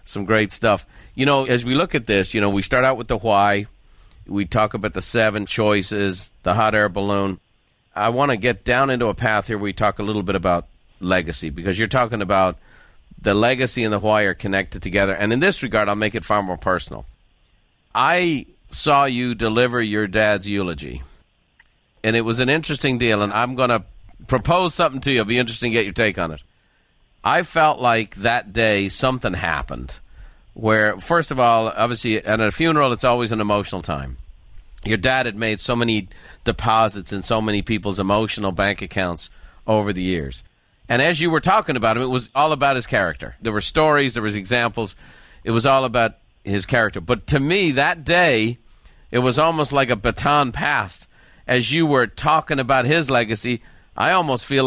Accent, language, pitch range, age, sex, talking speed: American, English, 100-125 Hz, 40-59, male, 200 wpm